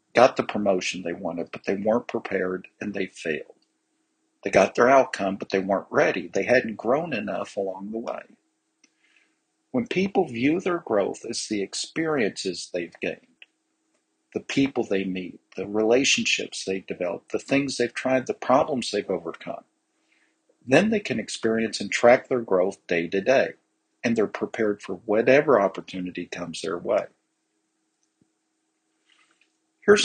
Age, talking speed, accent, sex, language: 50-69, 150 wpm, American, male, English